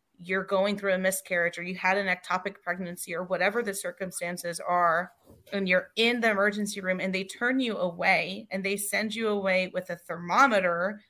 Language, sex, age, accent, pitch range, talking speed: English, female, 30-49, American, 185-215 Hz, 190 wpm